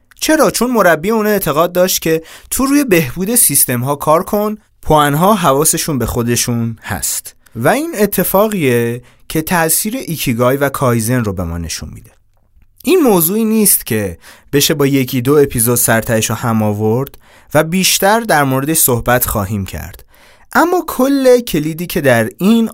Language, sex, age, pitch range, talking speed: Persian, male, 30-49, 110-170 Hz, 155 wpm